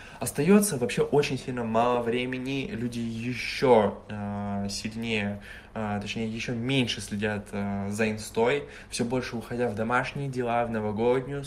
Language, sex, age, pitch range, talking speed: Russian, male, 20-39, 110-140 Hz, 130 wpm